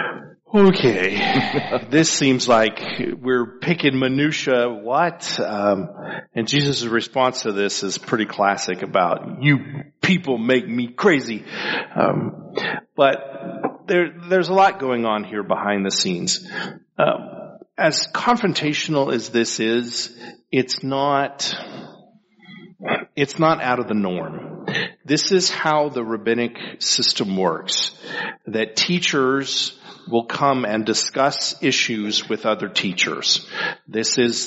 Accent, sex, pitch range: American, male, 115-165 Hz